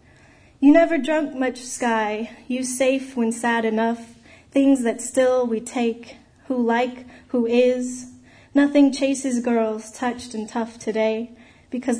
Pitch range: 215-255 Hz